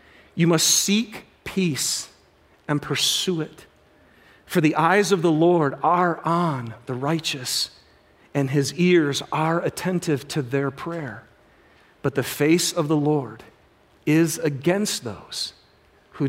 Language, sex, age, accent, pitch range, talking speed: English, male, 40-59, American, 150-240 Hz, 130 wpm